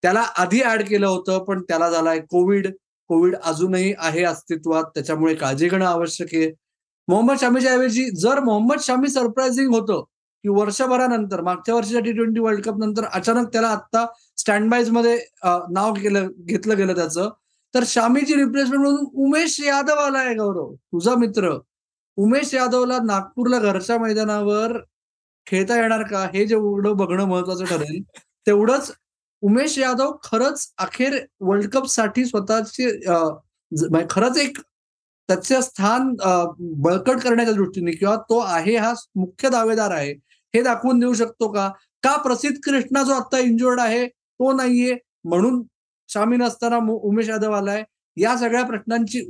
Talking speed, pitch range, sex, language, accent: 130 wpm, 190-245 Hz, male, Marathi, native